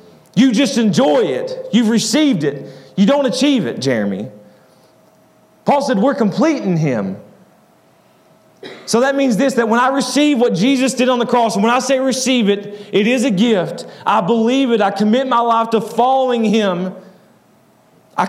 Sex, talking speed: male, 175 wpm